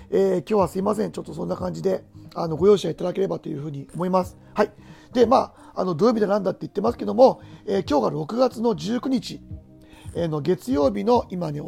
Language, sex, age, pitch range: Japanese, male, 40-59, 155-220 Hz